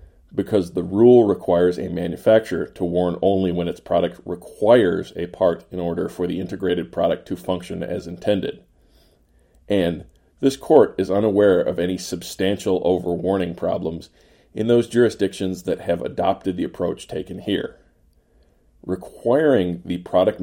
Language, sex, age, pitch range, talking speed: English, male, 40-59, 85-100 Hz, 140 wpm